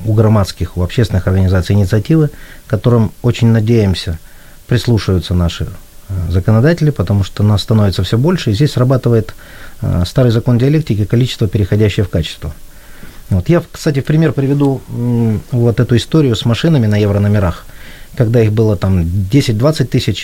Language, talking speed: Ukrainian, 150 wpm